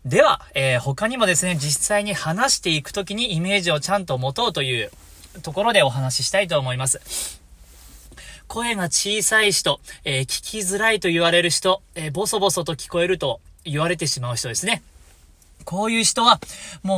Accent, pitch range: native, 135-210 Hz